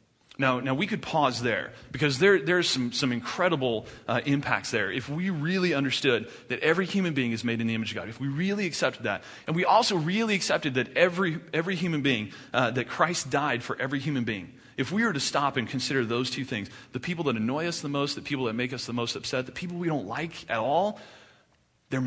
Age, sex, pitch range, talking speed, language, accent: 30-49, male, 110-145 Hz, 235 wpm, English, American